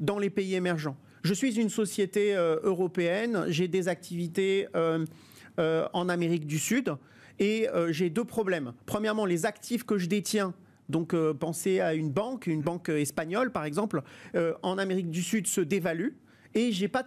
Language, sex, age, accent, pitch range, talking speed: French, male, 40-59, French, 175-225 Hz, 180 wpm